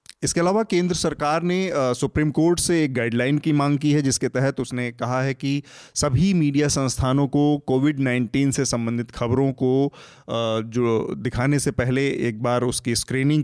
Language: Hindi